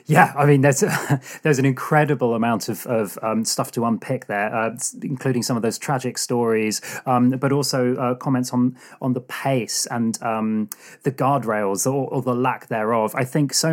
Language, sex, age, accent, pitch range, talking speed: English, male, 30-49, British, 120-145 Hz, 190 wpm